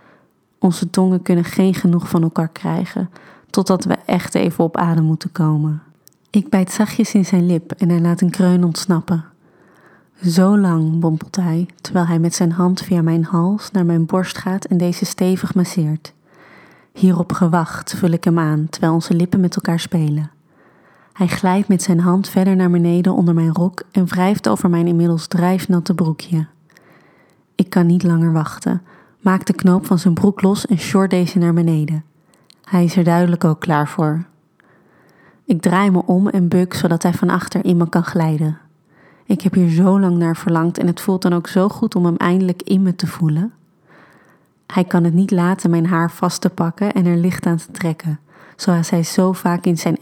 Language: Dutch